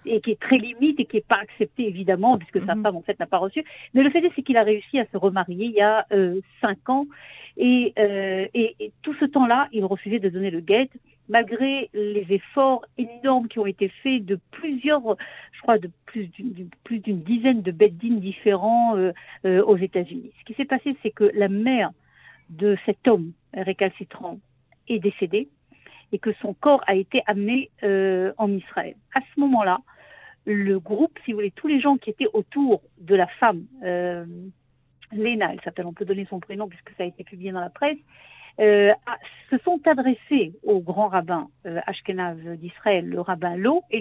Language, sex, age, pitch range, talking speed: French, female, 50-69, 190-255 Hz, 200 wpm